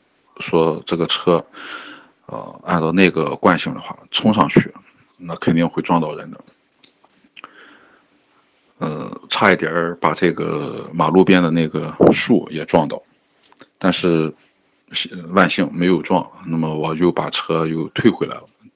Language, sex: Chinese, male